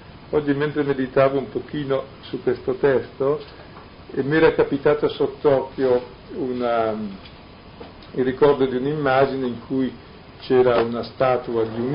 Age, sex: 50-69, male